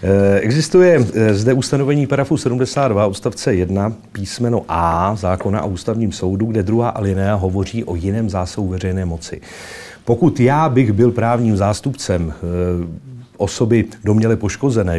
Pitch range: 95-115 Hz